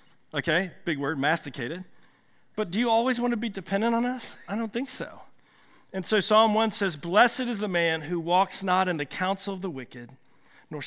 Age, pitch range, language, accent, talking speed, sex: 50-69, 160-220 Hz, English, American, 205 wpm, male